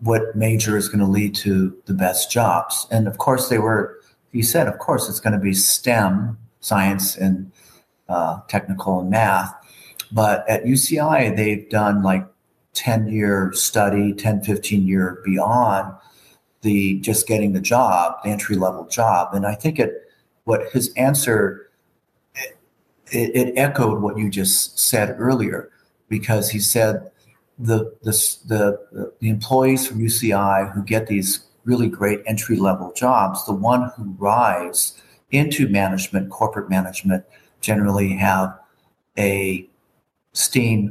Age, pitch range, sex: 40-59, 95-110 Hz, male